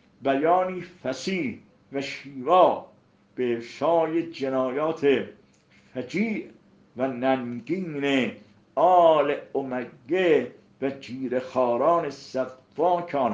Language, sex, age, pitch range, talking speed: Persian, male, 50-69, 130-170 Hz, 65 wpm